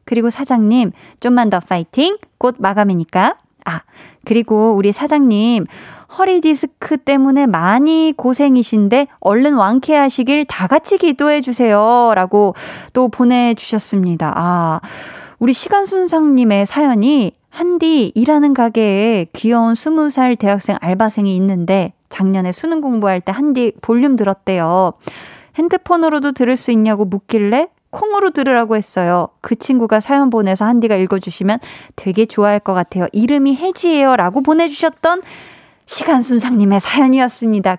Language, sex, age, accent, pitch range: Korean, female, 20-39, native, 205-285 Hz